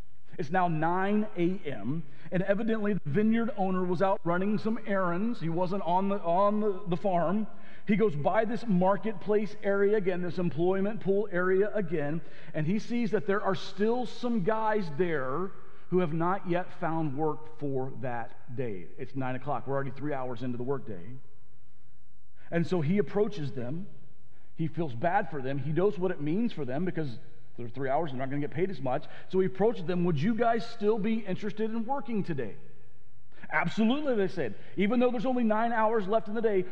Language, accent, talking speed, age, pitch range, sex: English, American, 195 wpm, 40-59, 145-210 Hz, male